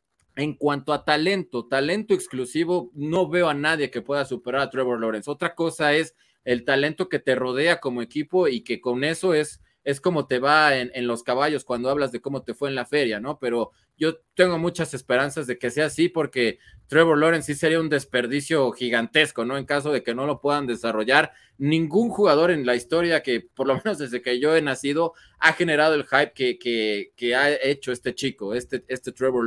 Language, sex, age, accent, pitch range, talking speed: Spanish, male, 30-49, Mexican, 125-165 Hz, 210 wpm